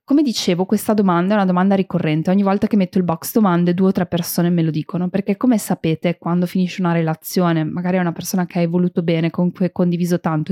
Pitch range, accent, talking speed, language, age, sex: 175-215 Hz, native, 240 wpm, Italian, 20-39, female